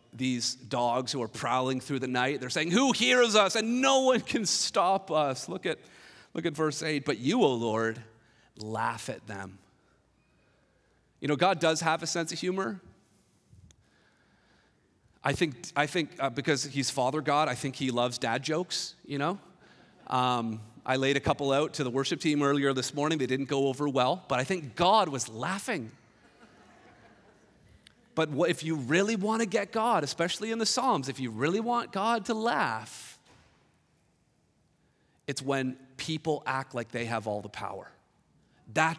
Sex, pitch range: male, 135-190 Hz